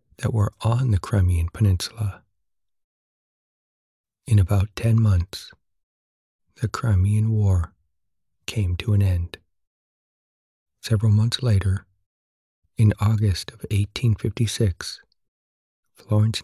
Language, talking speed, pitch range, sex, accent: English, 90 wpm, 90-110 Hz, male, American